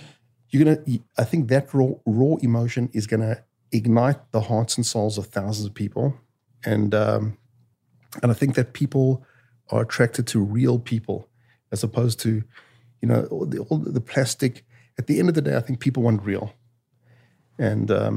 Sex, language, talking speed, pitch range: male, English, 175 wpm, 110-130 Hz